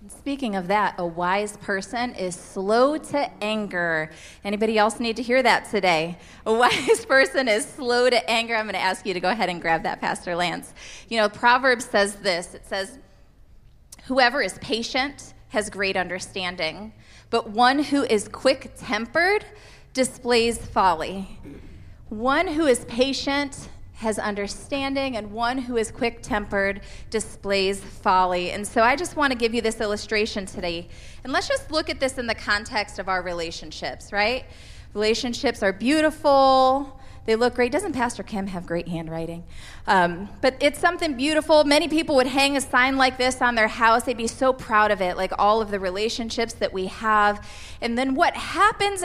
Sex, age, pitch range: female, 20-39, 200-265 Hz